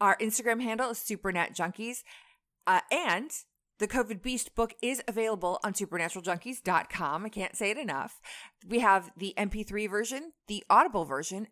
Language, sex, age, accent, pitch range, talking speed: English, female, 30-49, American, 180-240 Hz, 145 wpm